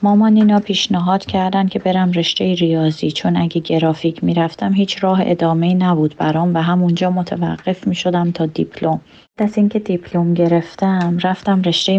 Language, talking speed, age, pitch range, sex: Persian, 145 wpm, 30-49, 170-190 Hz, female